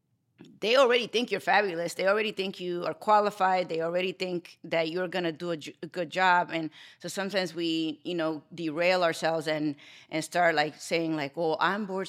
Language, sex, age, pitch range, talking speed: English, female, 30-49, 160-195 Hz, 200 wpm